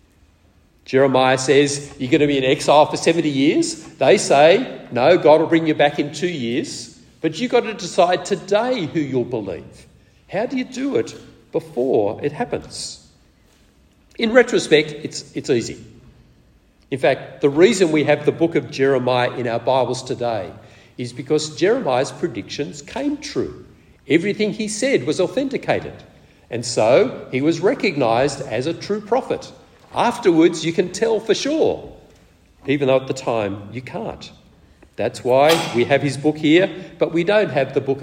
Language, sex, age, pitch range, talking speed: English, male, 50-69, 110-170 Hz, 165 wpm